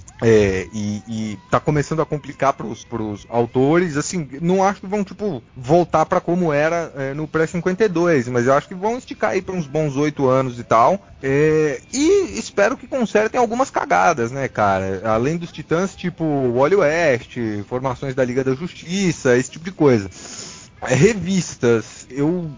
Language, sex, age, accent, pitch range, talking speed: Portuguese, male, 20-39, Brazilian, 125-175 Hz, 165 wpm